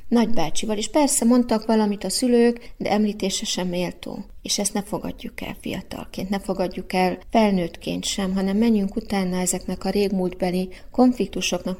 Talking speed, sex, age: 145 wpm, female, 30-49